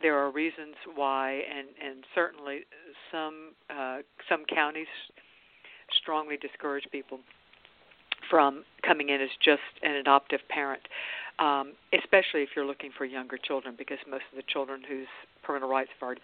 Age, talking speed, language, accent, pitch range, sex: 60-79, 150 wpm, English, American, 135-170 Hz, female